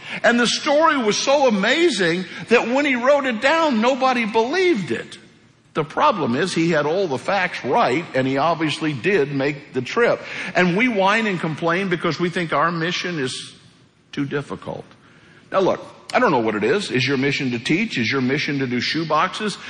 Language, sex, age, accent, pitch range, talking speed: English, male, 60-79, American, 140-205 Hz, 190 wpm